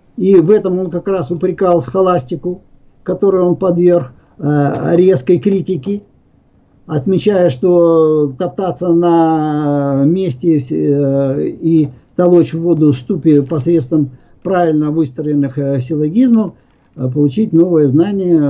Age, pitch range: 50-69, 145-195 Hz